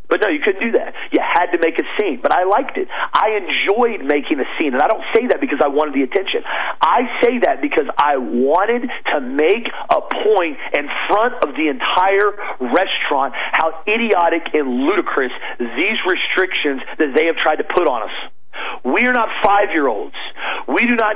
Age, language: 40-59, English